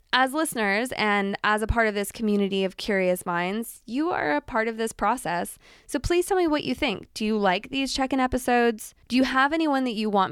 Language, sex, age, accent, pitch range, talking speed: English, female, 20-39, American, 195-255 Hz, 235 wpm